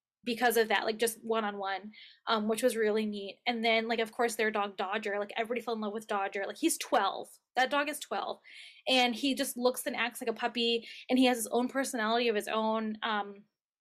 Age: 20-39